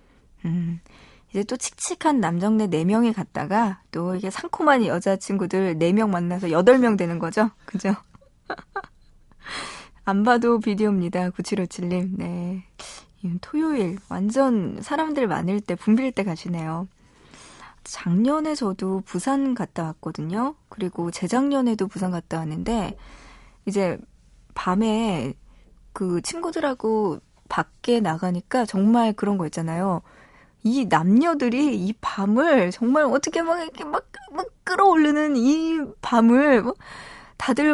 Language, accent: Korean, native